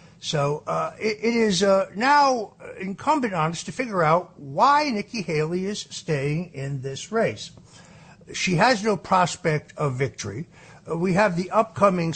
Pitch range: 145-180 Hz